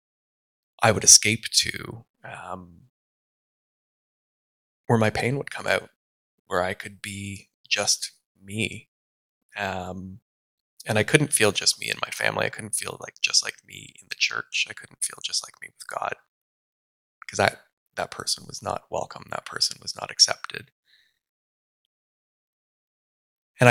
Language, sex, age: English, male, 20-39